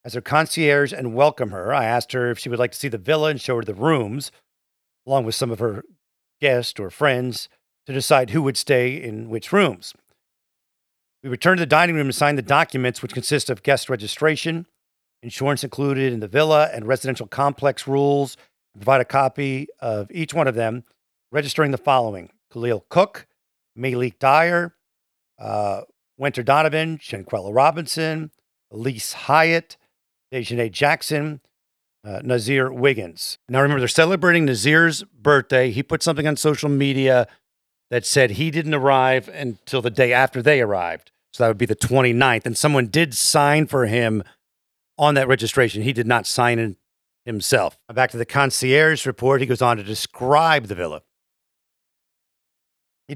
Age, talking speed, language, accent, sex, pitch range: 50-69, 165 wpm, English, American, male, 120-150 Hz